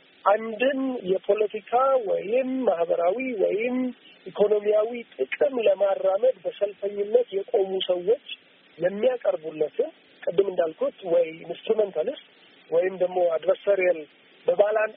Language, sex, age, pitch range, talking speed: Amharic, male, 50-69, 190-310 Hz, 80 wpm